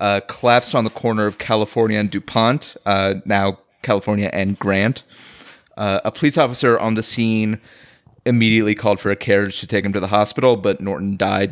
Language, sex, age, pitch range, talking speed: English, male, 30-49, 105-120 Hz, 180 wpm